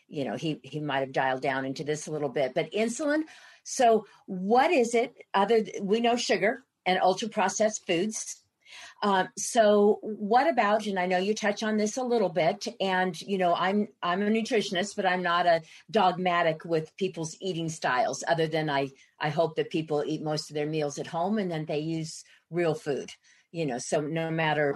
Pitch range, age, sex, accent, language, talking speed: 160-225 Hz, 50-69, female, American, English, 195 wpm